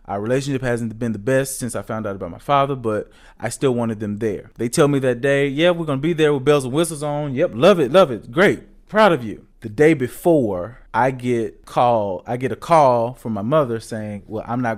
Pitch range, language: 110-145 Hz, English